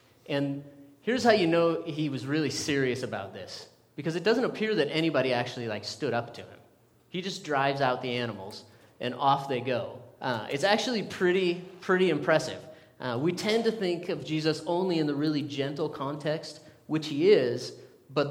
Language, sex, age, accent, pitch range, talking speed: English, male, 30-49, American, 125-165 Hz, 185 wpm